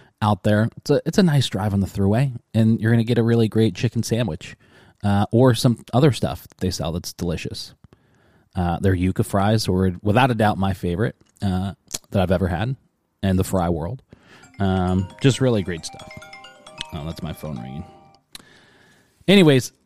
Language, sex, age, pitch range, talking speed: English, male, 20-39, 100-130 Hz, 185 wpm